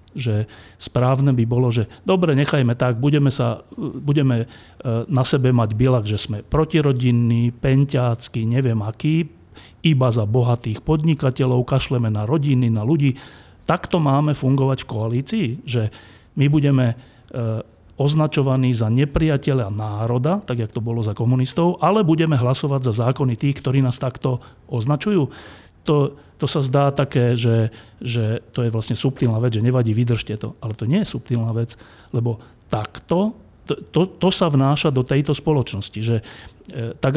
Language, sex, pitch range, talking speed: Slovak, male, 115-140 Hz, 150 wpm